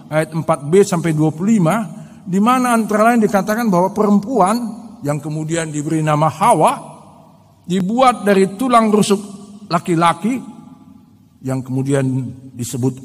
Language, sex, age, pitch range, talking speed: Indonesian, male, 50-69, 135-215 Hz, 105 wpm